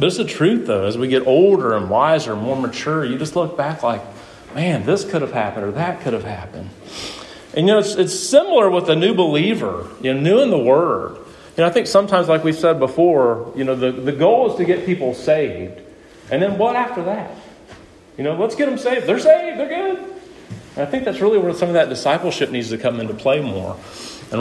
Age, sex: 40-59, male